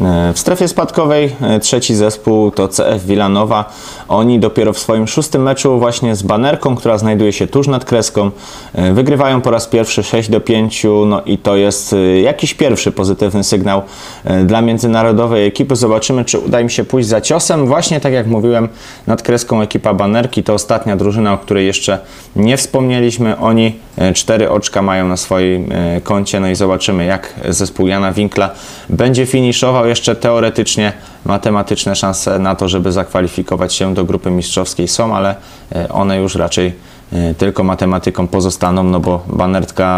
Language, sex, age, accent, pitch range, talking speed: Polish, male, 20-39, native, 95-120 Hz, 155 wpm